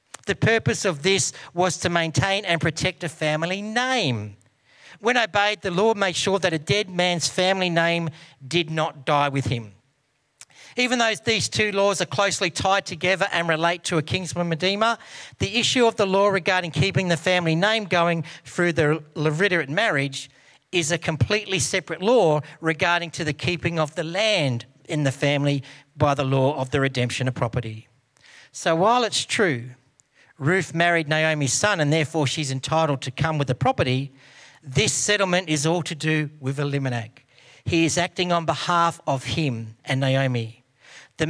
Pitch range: 135-180 Hz